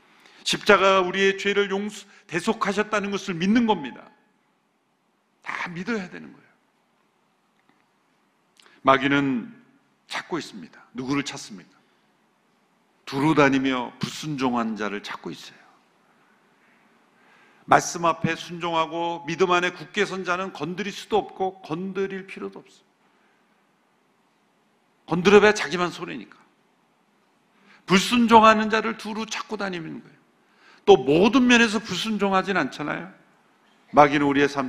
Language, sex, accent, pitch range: Korean, male, native, 160-210 Hz